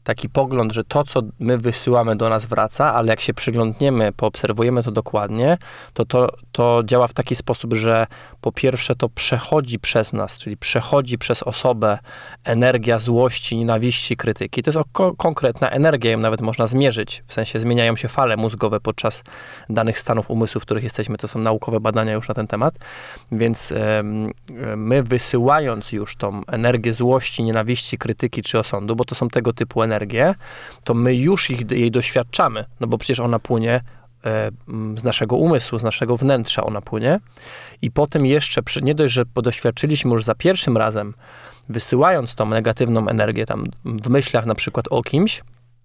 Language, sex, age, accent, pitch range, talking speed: Polish, male, 20-39, native, 110-130 Hz, 170 wpm